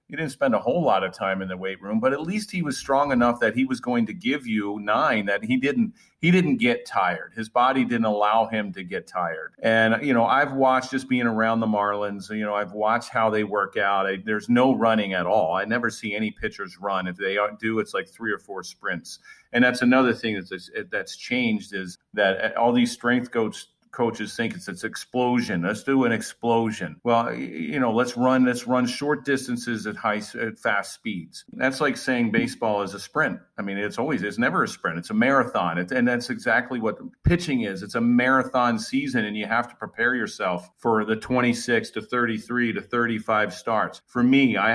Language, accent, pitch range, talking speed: English, American, 105-130 Hz, 215 wpm